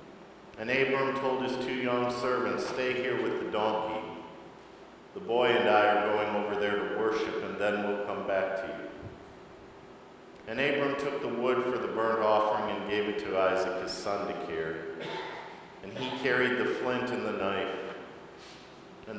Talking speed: 175 wpm